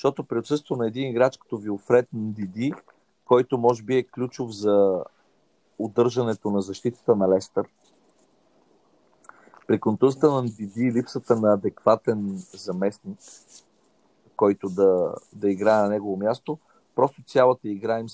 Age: 40-59